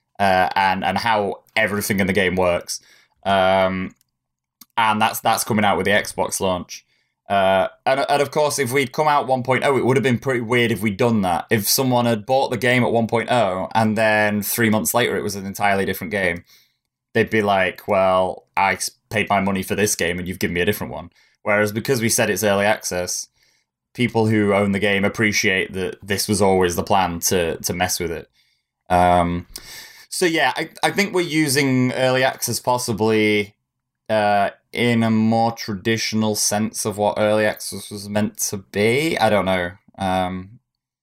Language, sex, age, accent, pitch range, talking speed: English, male, 20-39, British, 95-115 Hz, 190 wpm